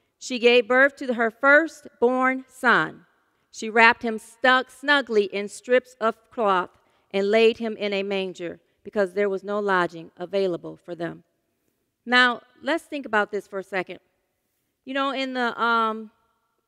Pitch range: 200-235 Hz